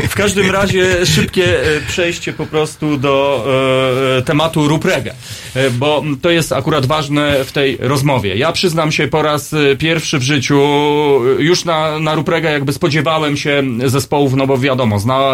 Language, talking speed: Polish, 155 wpm